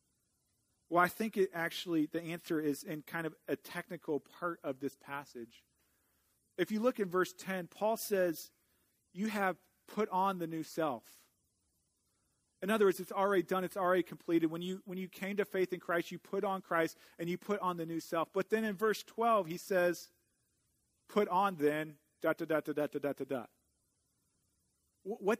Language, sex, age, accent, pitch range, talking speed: English, male, 40-59, American, 155-185 Hz, 190 wpm